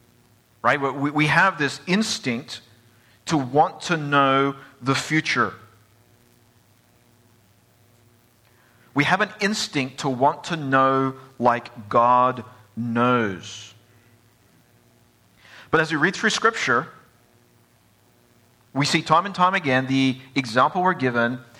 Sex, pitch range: male, 115-135 Hz